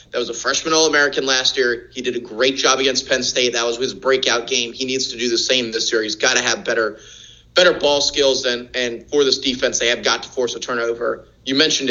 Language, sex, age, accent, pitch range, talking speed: English, male, 30-49, American, 120-140 Hz, 250 wpm